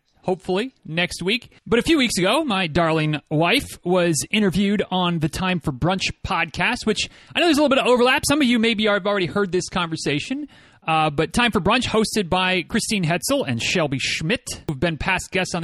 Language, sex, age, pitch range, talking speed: English, male, 30-49, 165-220 Hz, 215 wpm